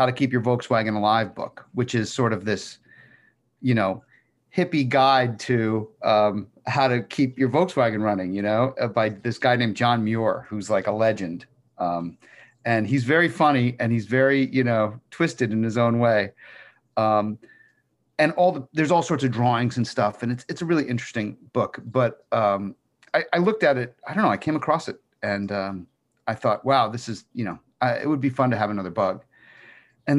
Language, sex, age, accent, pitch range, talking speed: English, male, 40-59, American, 110-140 Hz, 205 wpm